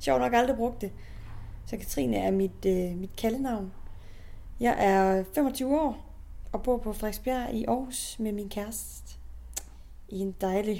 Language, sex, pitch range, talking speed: English, female, 180-225 Hz, 155 wpm